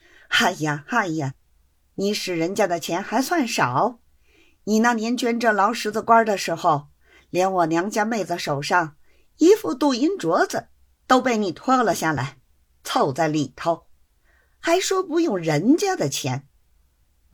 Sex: female